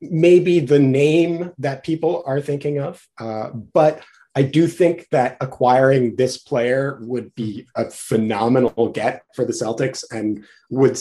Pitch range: 115-150 Hz